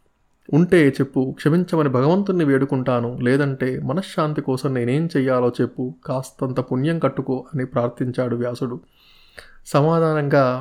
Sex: male